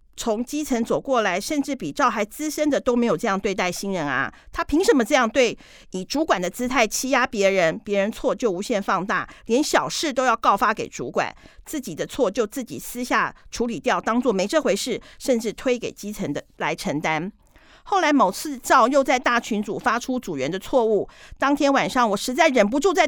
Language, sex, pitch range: Chinese, female, 205-275 Hz